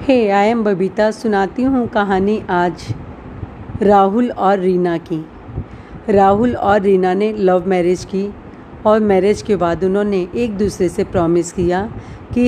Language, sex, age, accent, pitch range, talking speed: Hindi, female, 40-59, native, 180-215 Hz, 145 wpm